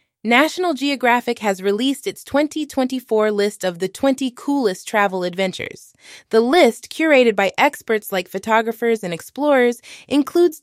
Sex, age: female, 20-39